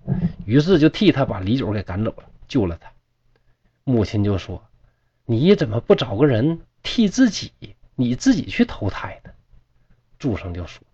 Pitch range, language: 105-150 Hz, Chinese